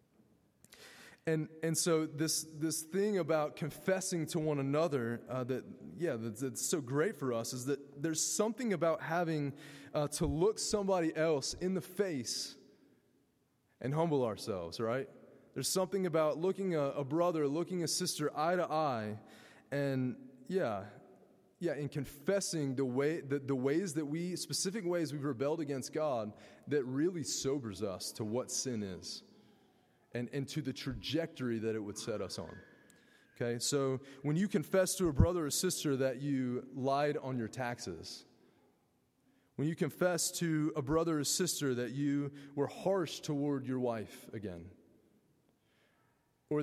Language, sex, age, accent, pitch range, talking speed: English, male, 20-39, American, 130-170 Hz, 155 wpm